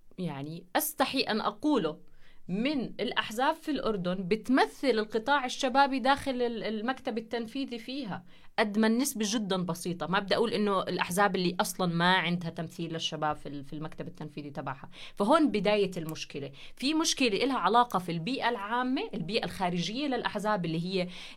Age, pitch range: 30-49, 170-235 Hz